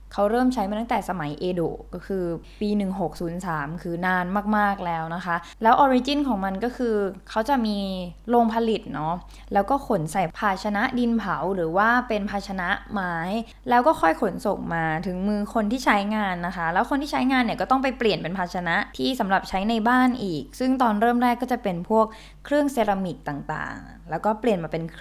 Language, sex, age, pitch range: Thai, female, 20-39, 185-245 Hz